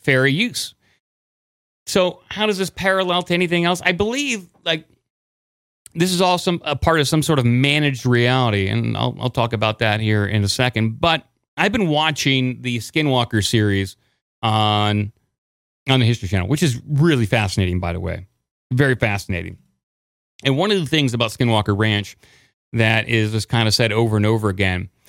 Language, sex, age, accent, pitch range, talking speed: English, male, 30-49, American, 110-145 Hz, 175 wpm